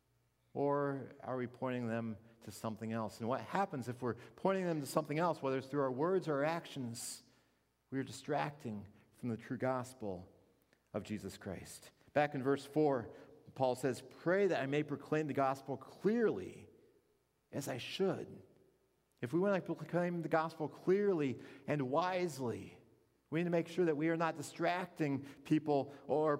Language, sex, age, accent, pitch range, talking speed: English, male, 40-59, American, 115-155 Hz, 170 wpm